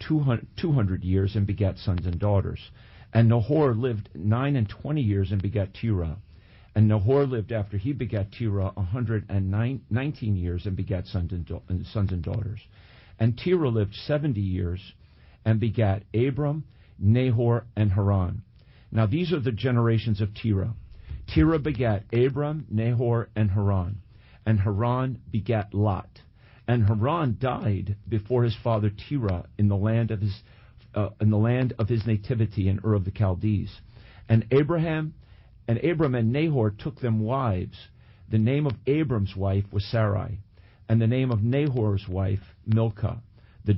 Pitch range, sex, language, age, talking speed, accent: 100-120 Hz, male, English, 50-69, 155 wpm, American